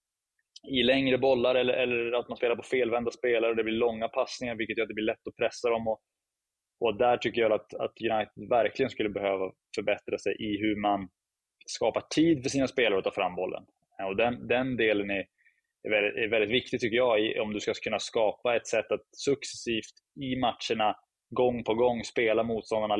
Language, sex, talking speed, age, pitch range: Swedish, male, 210 wpm, 20-39, 105-125 Hz